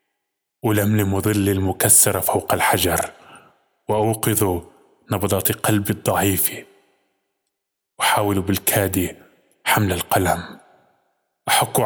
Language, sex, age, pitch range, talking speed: Arabic, male, 20-39, 95-115 Hz, 70 wpm